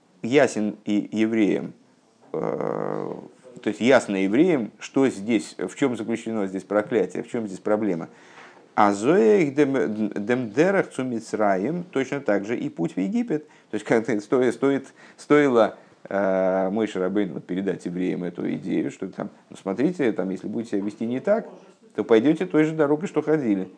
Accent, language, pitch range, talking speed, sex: native, Russian, 105-150 Hz, 150 wpm, male